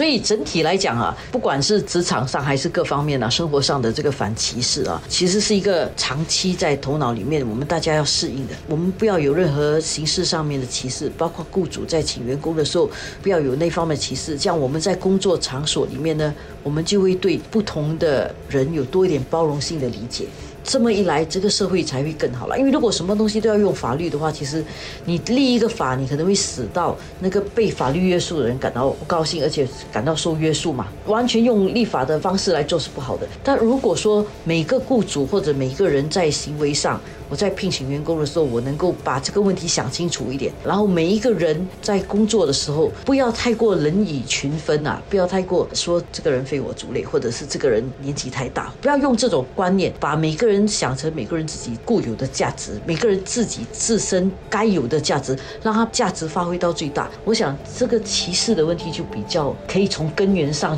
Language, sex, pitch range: Chinese, female, 145-200 Hz